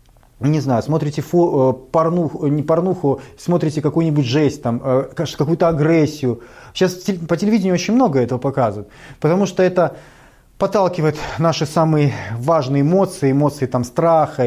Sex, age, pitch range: male, 30-49, 145-190 Hz